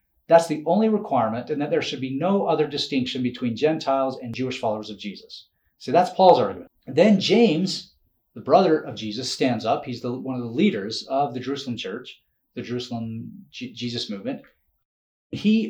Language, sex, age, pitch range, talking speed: English, male, 40-59, 125-155 Hz, 185 wpm